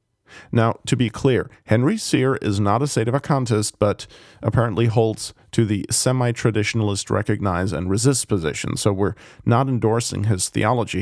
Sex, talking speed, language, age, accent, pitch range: male, 165 wpm, English, 40-59, American, 105-125 Hz